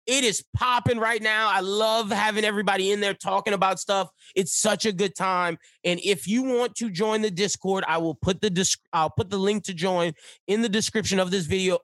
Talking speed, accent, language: 220 wpm, American, English